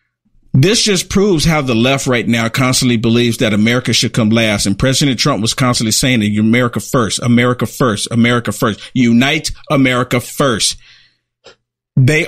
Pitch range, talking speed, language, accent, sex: 120-180 Hz, 155 wpm, English, American, male